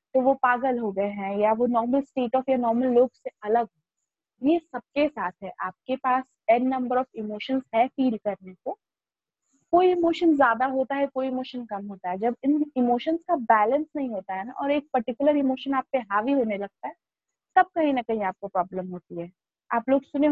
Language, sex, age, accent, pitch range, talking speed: Hindi, female, 20-39, native, 225-285 Hz, 205 wpm